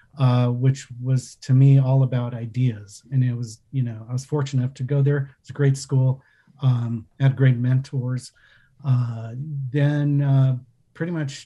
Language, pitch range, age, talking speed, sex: English, 125-140 Hz, 40-59, 175 wpm, male